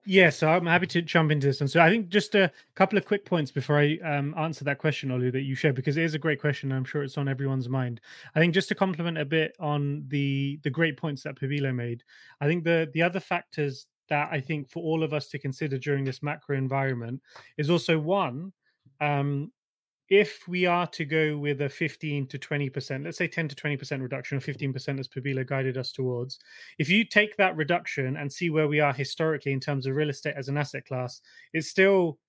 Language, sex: English, male